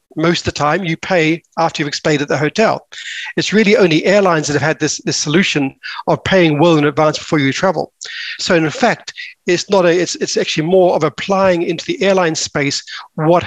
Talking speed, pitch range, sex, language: 210 wpm, 155-185 Hz, male, English